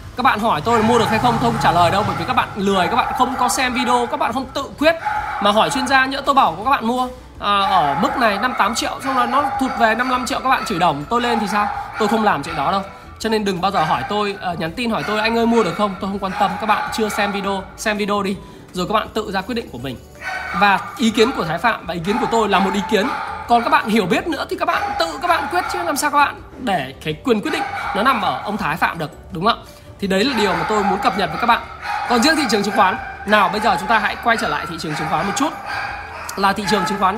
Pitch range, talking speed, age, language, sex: 195-255 Hz, 300 wpm, 20-39, Vietnamese, male